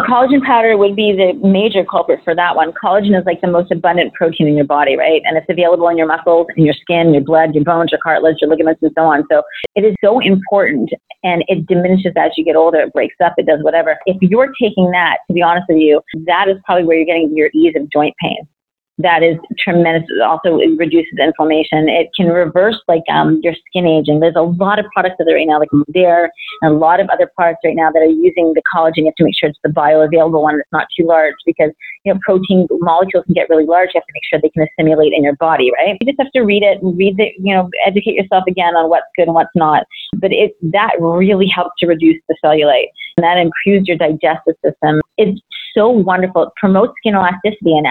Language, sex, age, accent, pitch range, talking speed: English, female, 30-49, American, 160-185 Hz, 245 wpm